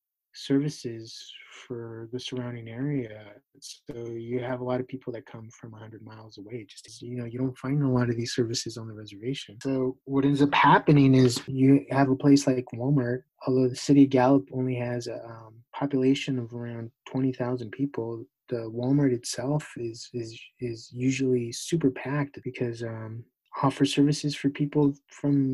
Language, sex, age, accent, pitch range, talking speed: English, male, 20-39, American, 120-140 Hz, 175 wpm